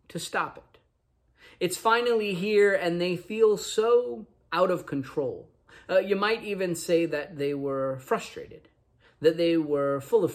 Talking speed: 155 wpm